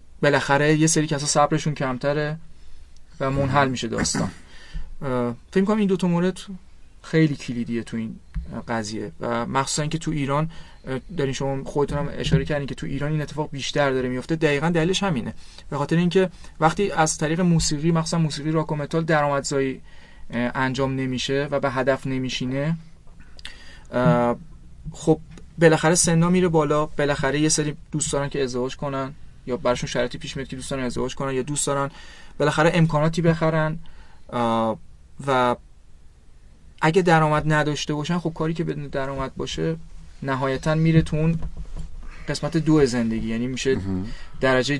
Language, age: Persian, 30-49